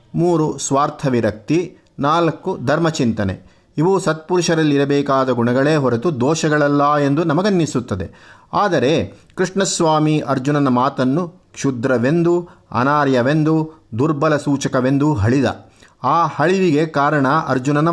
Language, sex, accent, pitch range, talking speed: Kannada, male, native, 125-160 Hz, 80 wpm